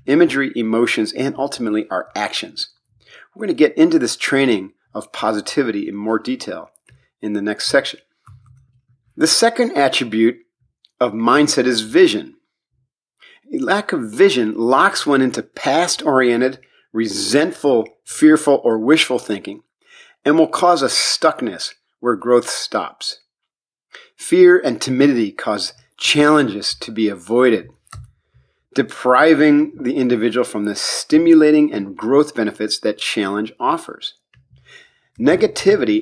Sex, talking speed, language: male, 120 wpm, English